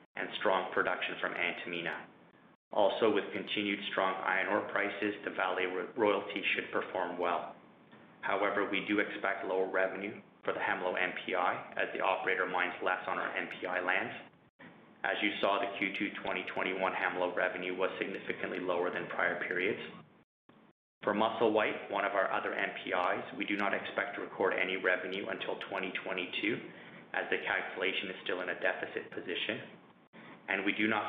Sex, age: male, 30-49